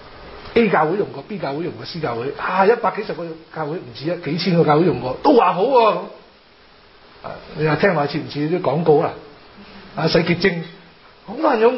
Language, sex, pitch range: Chinese, male, 155-220 Hz